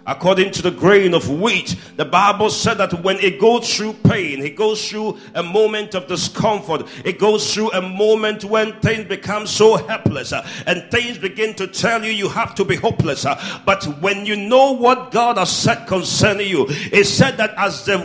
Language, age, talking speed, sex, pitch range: English, 50-69, 195 wpm, male, 195-245 Hz